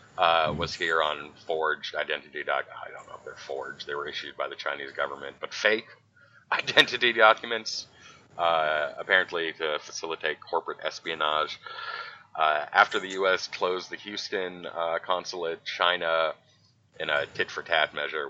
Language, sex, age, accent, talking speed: English, male, 30-49, American, 145 wpm